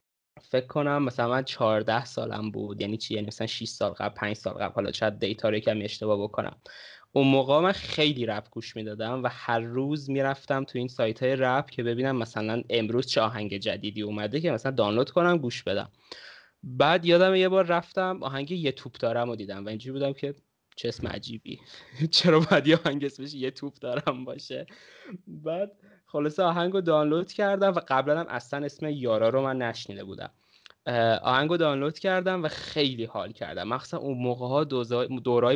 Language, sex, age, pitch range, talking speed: Persian, male, 20-39, 120-150 Hz, 175 wpm